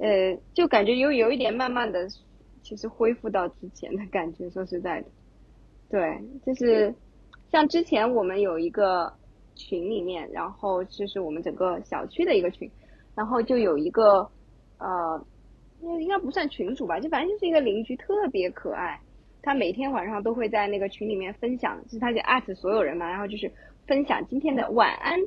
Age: 20-39